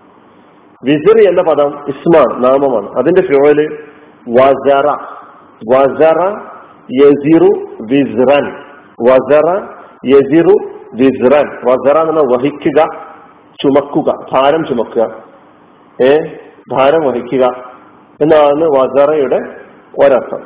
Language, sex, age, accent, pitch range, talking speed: Malayalam, male, 50-69, native, 130-165 Hz, 60 wpm